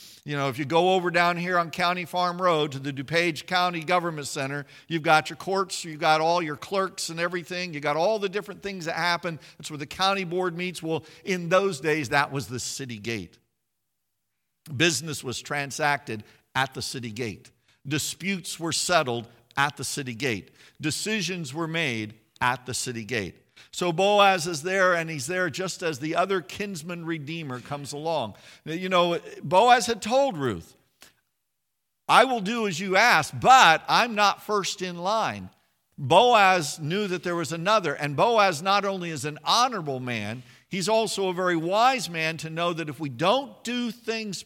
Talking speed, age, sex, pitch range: 180 wpm, 50-69, male, 140-185 Hz